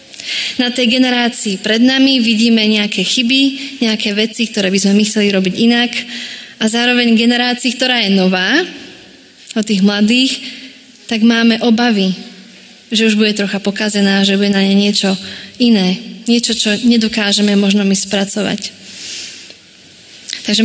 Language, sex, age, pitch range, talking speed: Slovak, female, 20-39, 200-240 Hz, 135 wpm